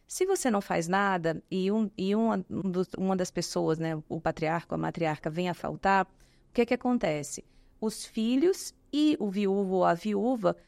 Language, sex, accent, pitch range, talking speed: Portuguese, female, Brazilian, 170-225 Hz, 195 wpm